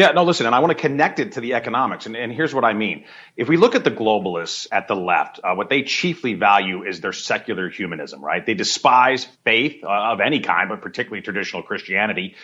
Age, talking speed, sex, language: 40-59, 230 wpm, male, English